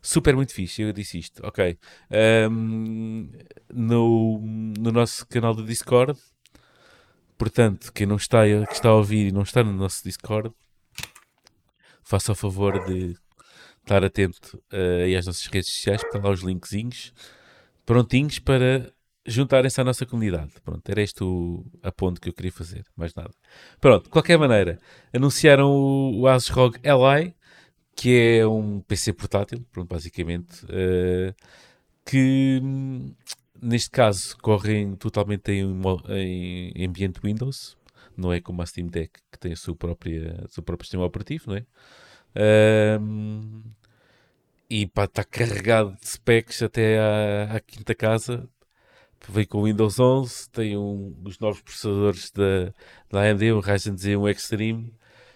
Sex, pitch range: male, 95-120 Hz